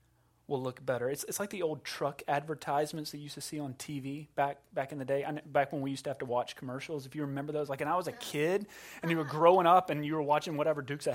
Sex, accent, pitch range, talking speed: male, American, 150-200 Hz, 295 wpm